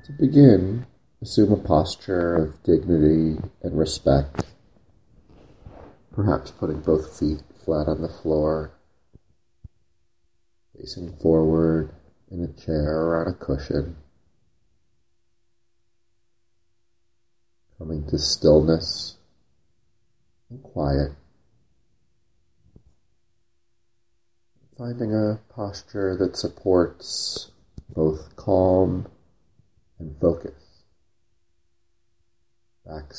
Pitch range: 80-100 Hz